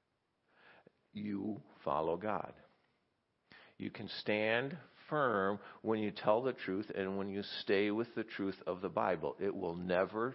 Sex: male